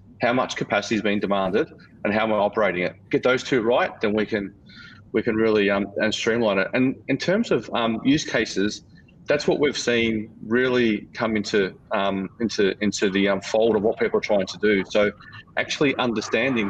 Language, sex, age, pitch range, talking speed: English, male, 30-49, 105-120 Hz, 200 wpm